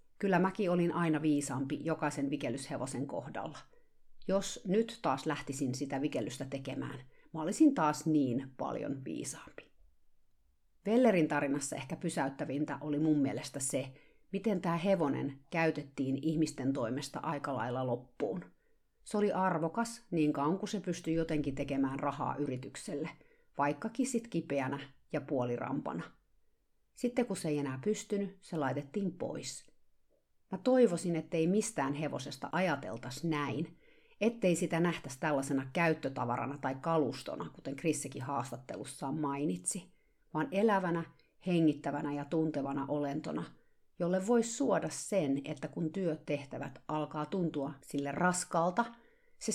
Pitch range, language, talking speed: 140-180 Hz, Finnish, 120 wpm